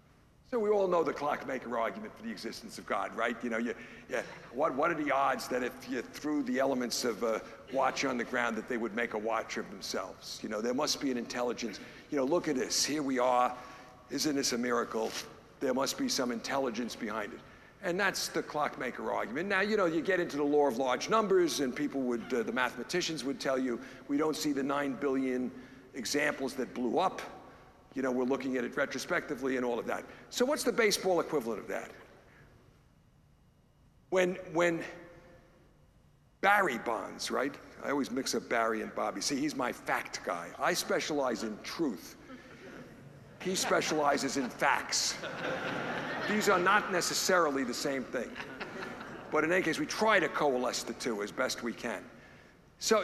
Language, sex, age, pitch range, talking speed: English, male, 60-79, 130-175 Hz, 190 wpm